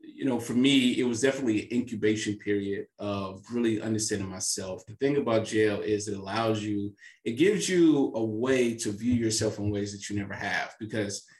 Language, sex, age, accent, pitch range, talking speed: English, male, 30-49, American, 105-135 Hz, 195 wpm